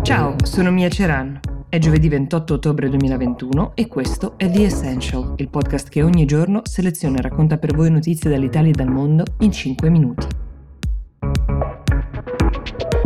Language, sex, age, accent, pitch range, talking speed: Italian, female, 20-39, native, 130-160 Hz, 145 wpm